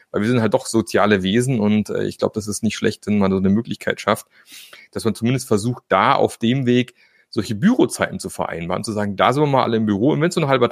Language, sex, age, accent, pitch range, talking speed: German, male, 30-49, German, 105-125 Hz, 265 wpm